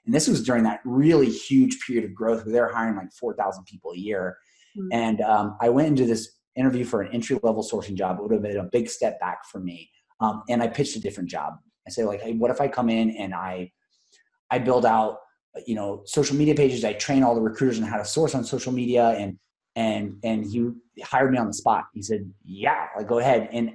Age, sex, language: 30-49, male, English